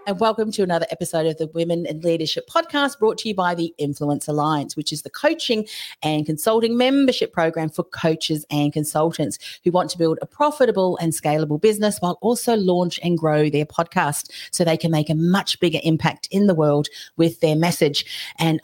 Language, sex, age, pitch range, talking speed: English, female, 40-59, 160-220 Hz, 195 wpm